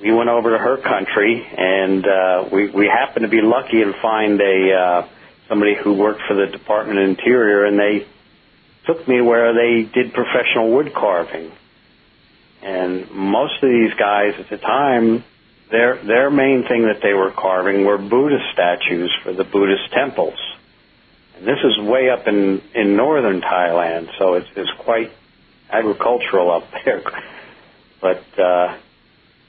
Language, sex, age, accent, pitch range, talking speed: English, male, 50-69, American, 100-120 Hz, 155 wpm